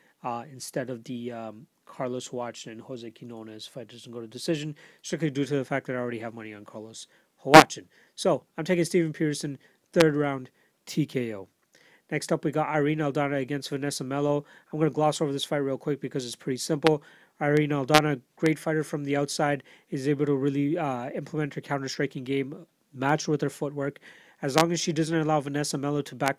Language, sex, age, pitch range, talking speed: English, male, 30-49, 135-150 Hz, 200 wpm